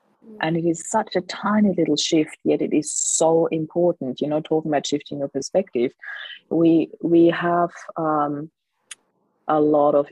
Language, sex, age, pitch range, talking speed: English, female, 30-49, 145-165 Hz, 160 wpm